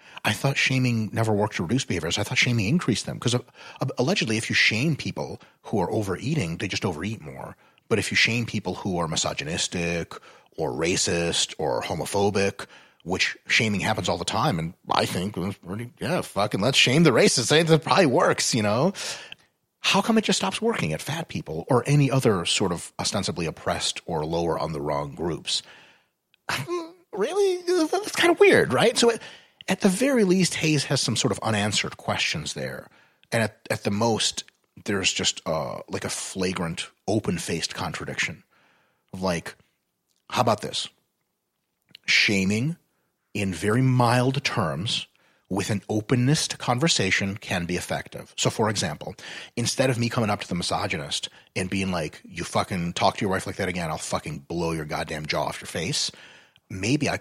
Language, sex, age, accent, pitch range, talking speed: English, male, 30-49, American, 100-155 Hz, 170 wpm